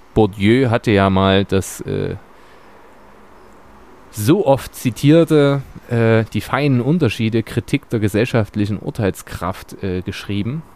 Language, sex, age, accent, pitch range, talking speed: German, male, 30-49, German, 100-130 Hz, 105 wpm